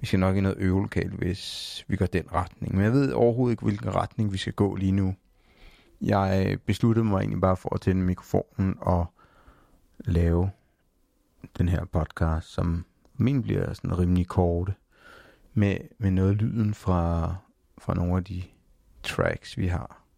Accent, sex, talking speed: native, male, 165 wpm